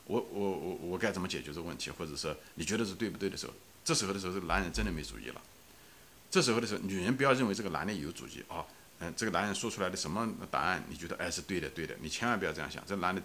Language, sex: Chinese, male